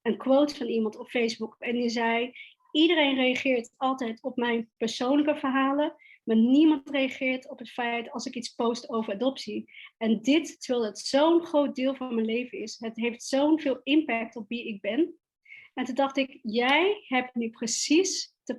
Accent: Dutch